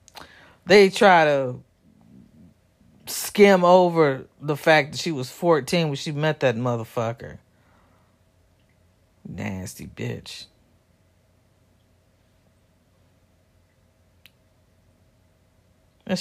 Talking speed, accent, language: 70 wpm, American, English